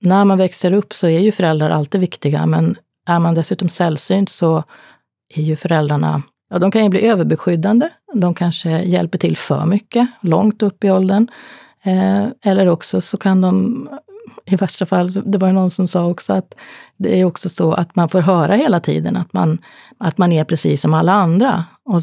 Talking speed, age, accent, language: 195 wpm, 30-49, native, Swedish